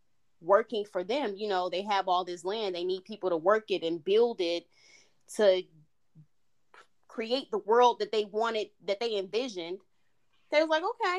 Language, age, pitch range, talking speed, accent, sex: English, 20-39, 185-245 Hz, 175 wpm, American, female